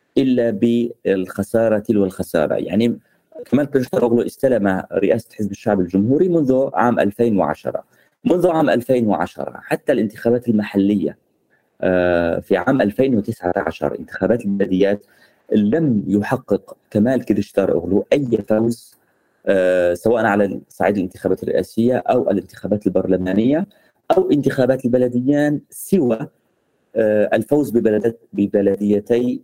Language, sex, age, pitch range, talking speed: Arabic, male, 30-49, 100-130 Hz, 100 wpm